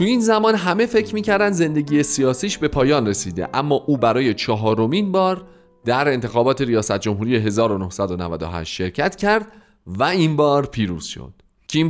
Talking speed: 145 wpm